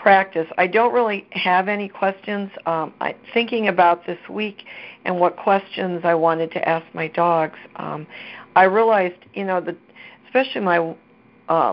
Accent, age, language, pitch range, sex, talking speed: American, 60-79, English, 155-185 Hz, female, 150 wpm